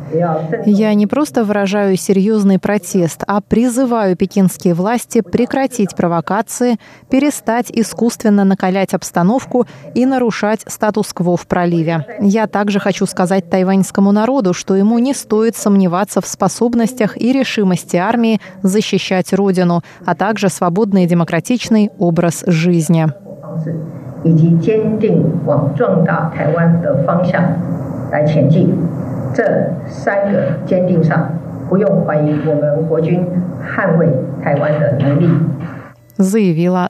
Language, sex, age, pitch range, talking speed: Russian, female, 30-49, 170-220 Hz, 75 wpm